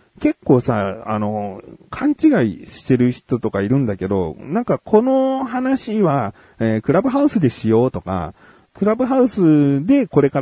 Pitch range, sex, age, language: 110-155 Hz, male, 40-59, Japanese